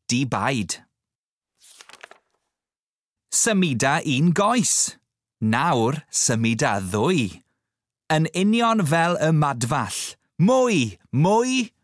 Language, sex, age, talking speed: English, male, 30-49, 70 wpm